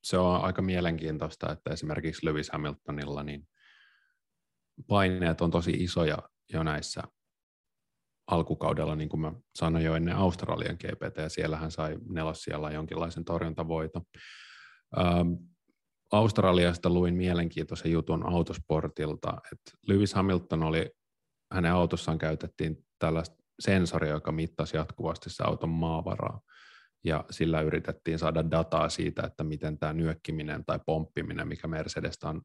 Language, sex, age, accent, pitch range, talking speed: Finnish, male, 30-49, native, 80-90 Hz, 125 wpm